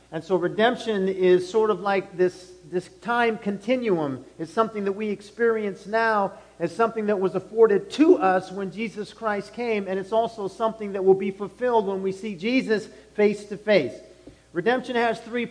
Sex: male